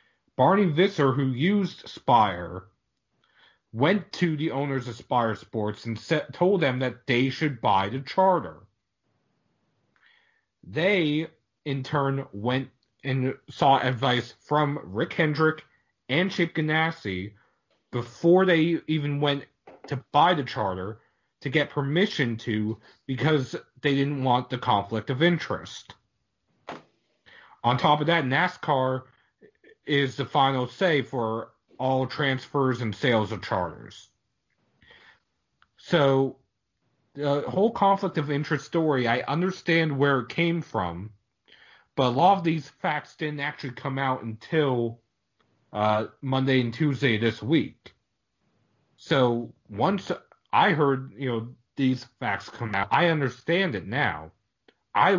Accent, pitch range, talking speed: American, 120-155 Hz, 125 wpm